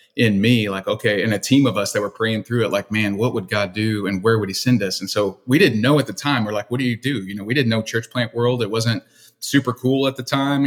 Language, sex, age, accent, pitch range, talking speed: English, male, 30-49, American, 105-125 Hz, 310 wpm